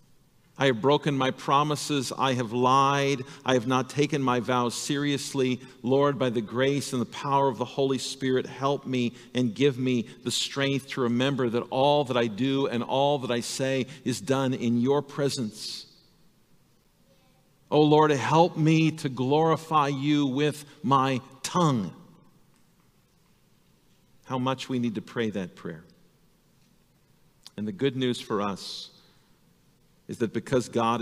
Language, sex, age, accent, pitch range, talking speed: English, male, 50-69, American, 110-135 Hz, 150 wpm